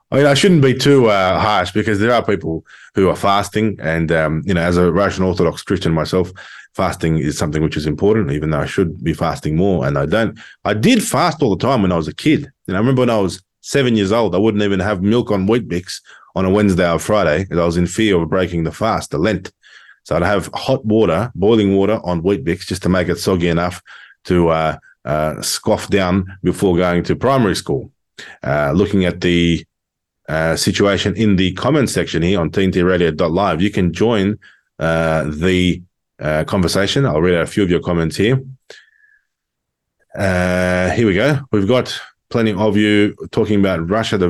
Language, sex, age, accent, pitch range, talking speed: English, male, 20-39, Australian, 90-105 Hz, 210 wpm